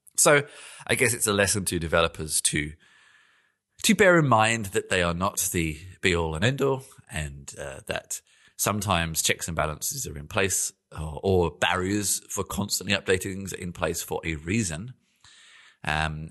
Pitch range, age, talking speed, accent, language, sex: 85-125 Hz, 30-49, 165 wpm, British, English, male